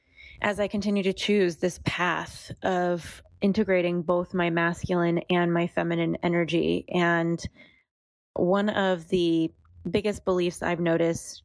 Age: 20-39